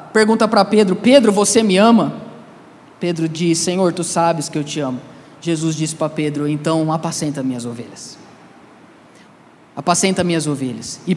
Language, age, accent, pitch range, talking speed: Portuguese, 20-39, Brazilian, 160-210 Hz, 150 wpm